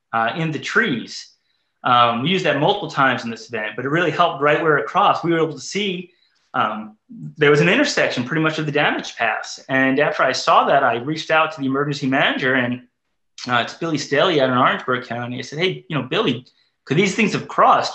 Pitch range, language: 135-180 Hz, English